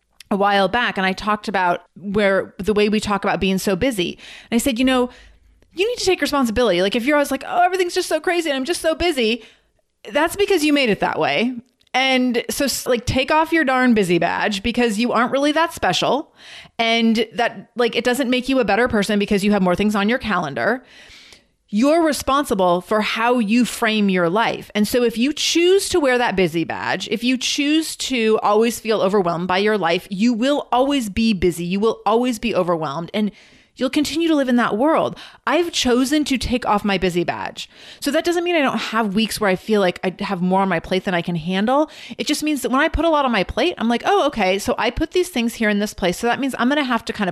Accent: American